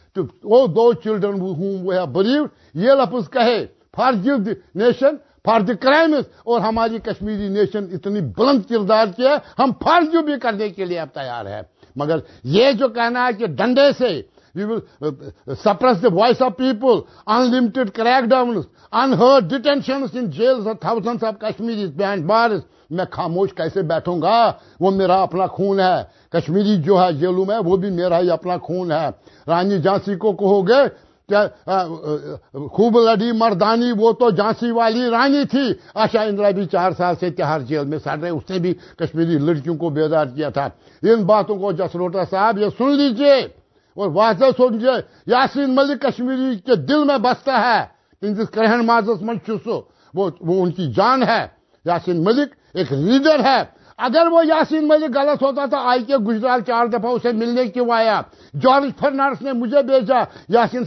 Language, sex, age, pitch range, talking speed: Urdu, male, 60-79, 185-255 Hz, 150 wpm